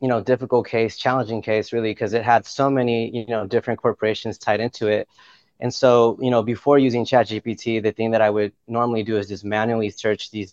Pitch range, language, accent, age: 105-120 Hz, English, American, 20-39